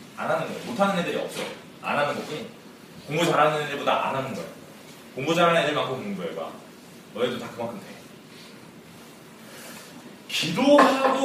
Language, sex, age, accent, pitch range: Korean, male, 30-49, native, 195-265 Hz